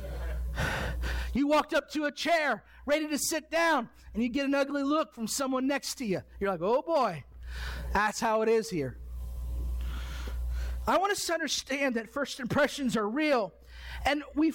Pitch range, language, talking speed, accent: 210-300 Hz, English, 175 wpm, American